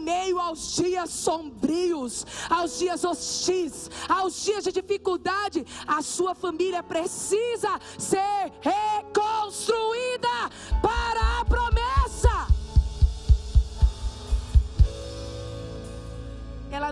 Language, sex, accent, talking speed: Portuguese, female, Brazilian, 75 wpm